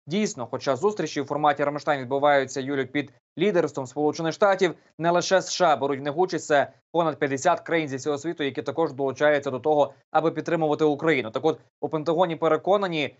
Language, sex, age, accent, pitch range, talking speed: Ukrainian, male, 20-39, native, 140-160 Hz, 180 wpm